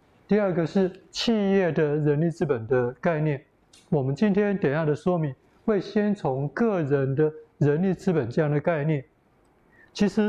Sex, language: male, Chinese